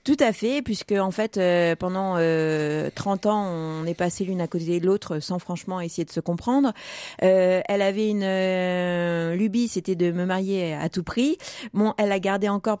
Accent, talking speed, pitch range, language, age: French, 200 wpm, 190-250 Hz, French, 30-49